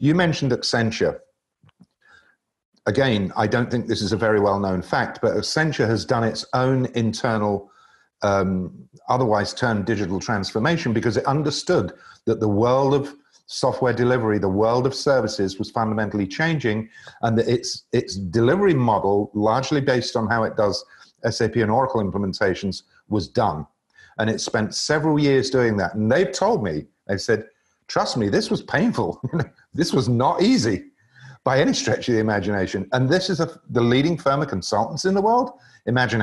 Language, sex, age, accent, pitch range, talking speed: English, male, 50-69, British, 105-140 Hz, 165 wpm